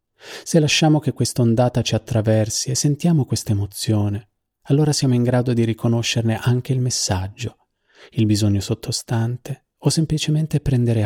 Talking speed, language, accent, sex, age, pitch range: 135 wpm, Italian, native, male, 30-49, 110-125 Hz